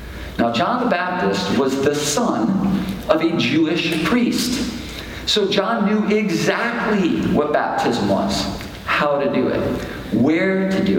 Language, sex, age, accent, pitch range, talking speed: English, male, 50-69, American, 155-235 Hz, 135 wpm